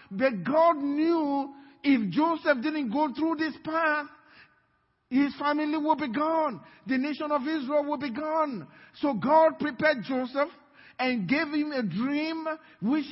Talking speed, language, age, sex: 145 wpm, English, 50-69, male